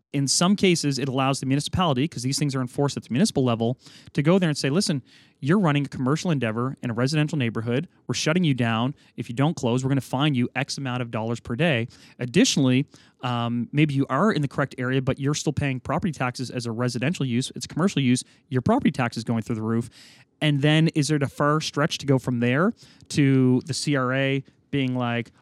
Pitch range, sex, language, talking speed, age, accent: 125-150 Hz, male, English, 225 wpm, 30-49, American